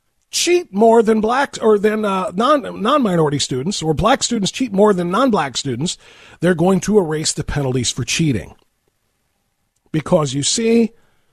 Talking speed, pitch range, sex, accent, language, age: 165 wpm, 160-240 Hz, male, American, English, 40-59